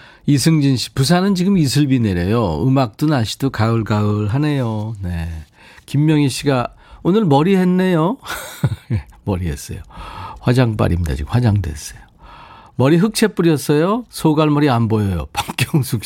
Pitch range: 95-140 Hz